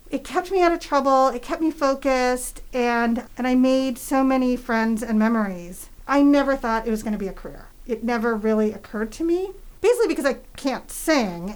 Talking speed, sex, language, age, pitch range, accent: 200 wpm, female, English, 40-59, 235-295 Hz, American